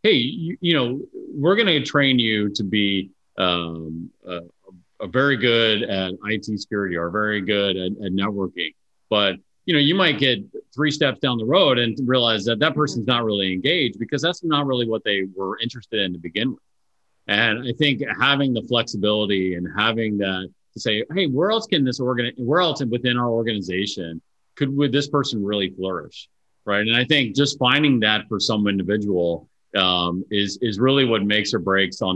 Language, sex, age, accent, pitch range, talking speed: English, male, 40-59, American, 95-125 Hz, 190 wpm